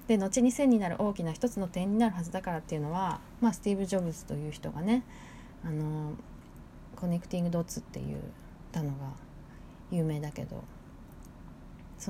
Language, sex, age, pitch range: Japanese, female, 20-39, 155-210 Hz